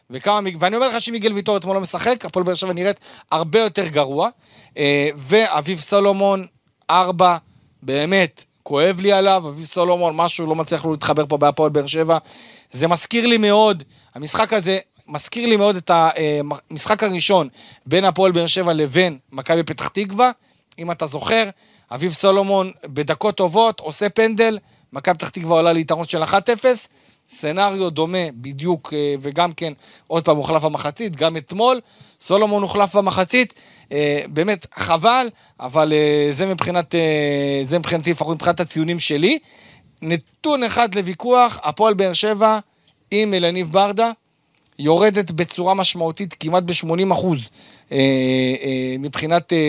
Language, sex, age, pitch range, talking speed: Hebrew, male, 40-59, 155-205 Hz, 135 wpm